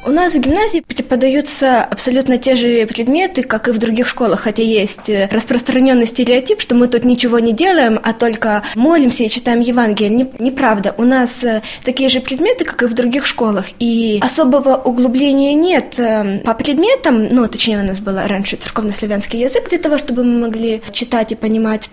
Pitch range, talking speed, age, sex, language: 215-250 Hz, 170 wpm, 10-29, female, Russian